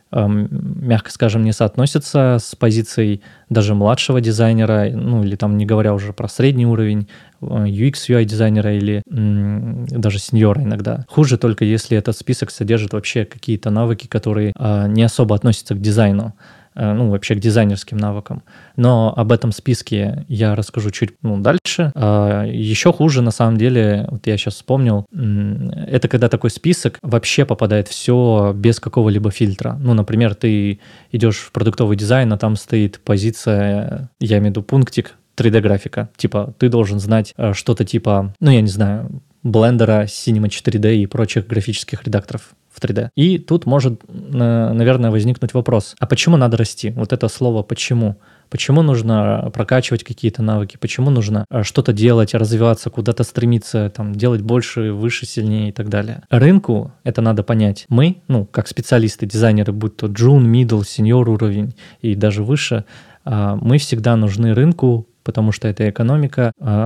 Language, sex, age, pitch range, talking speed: Russian, male, 20-39, 105-125 Hz, 150 wpm